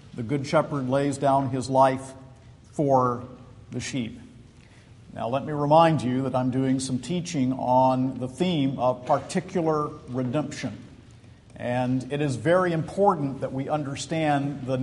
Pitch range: 130-155 Hz